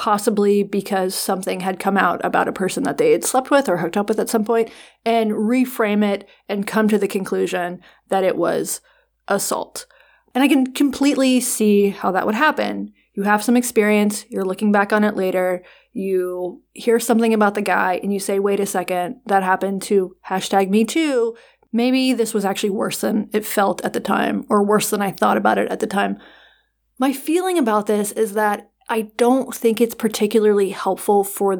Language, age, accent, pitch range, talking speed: English, 30-49, American, 200-245 Hz, 200 wpm